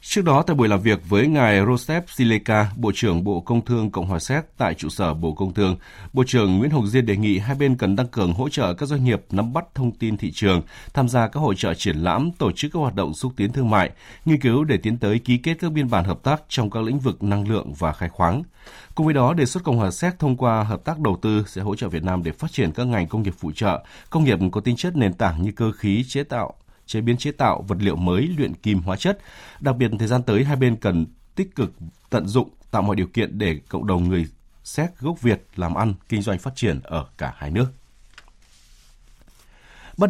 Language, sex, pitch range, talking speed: Vietnamese, male, 95-130 Hz, 255 wpm